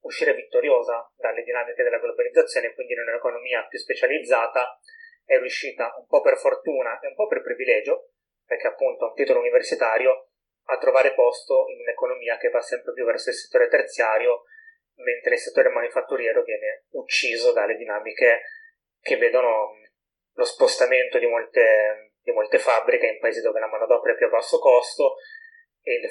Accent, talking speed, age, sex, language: native, 160 wpm, 30-49, male, Italian